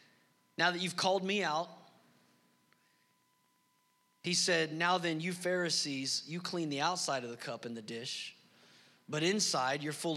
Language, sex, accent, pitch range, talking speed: English, male, American, 195-285 Hz, 155 wpm